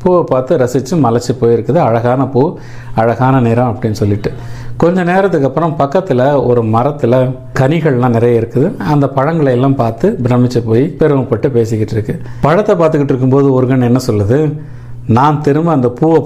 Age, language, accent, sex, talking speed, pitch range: 50-69, Tamil, native, male, 145 wpm, 120-145 Hz